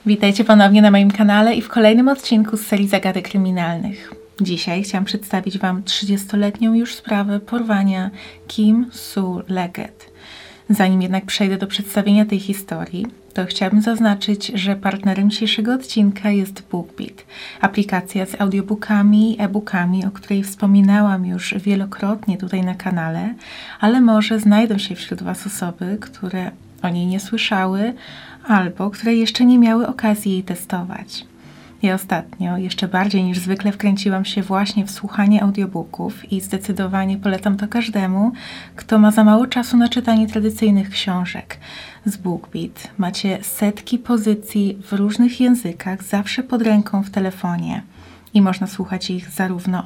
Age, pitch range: 30-49, 190-215 Hz